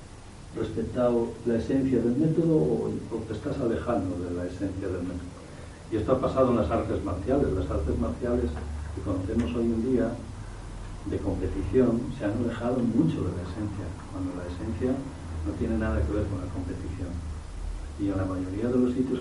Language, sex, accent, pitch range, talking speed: Spanish, male, Spanish, 90-115 Hz, 180 wpm